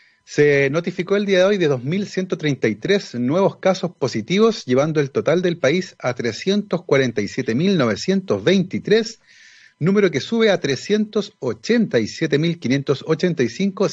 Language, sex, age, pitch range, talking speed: Spanish, male, 40-59, 135-190 Hz, 100 wpm